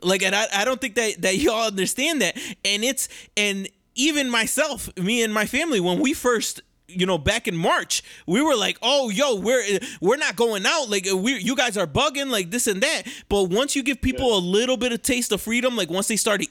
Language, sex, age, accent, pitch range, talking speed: English, male, 20-39, American, 180-235 Hz, 235 wpm